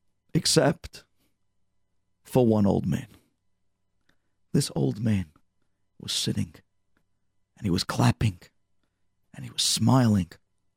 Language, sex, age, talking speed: English, male, 50-69, 100 wpm